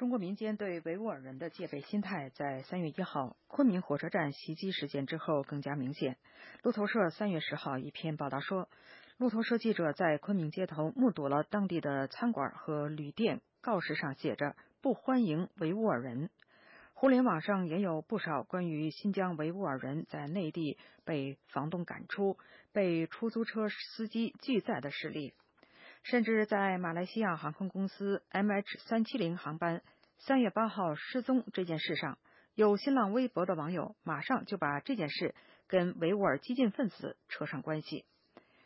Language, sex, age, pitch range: English, female, 50-69, 155-215 Hz